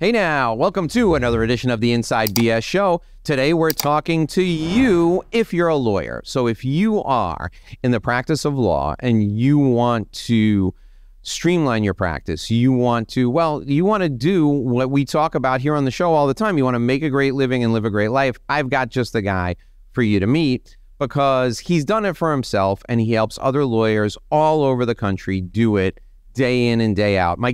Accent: American